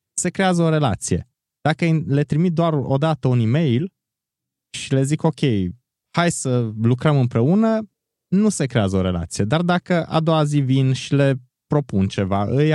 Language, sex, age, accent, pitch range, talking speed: Romanian, male, 20-39, native, 120-155 Hz, 170 wpm